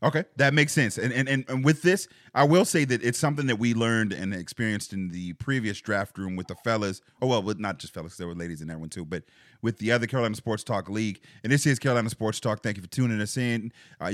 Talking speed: 265 wpm